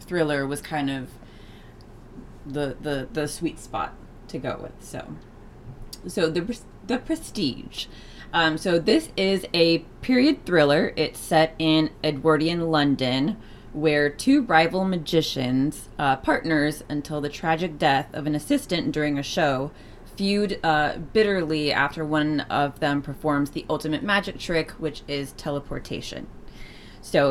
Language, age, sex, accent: English, 20-39, female, American